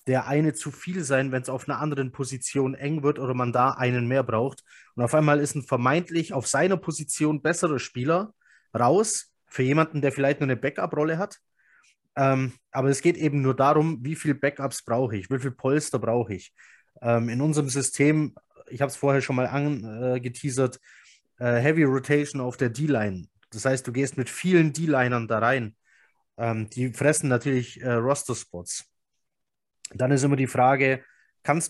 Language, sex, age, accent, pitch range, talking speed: German, male, 20-39, German, 125-145 Hz, 180 wpm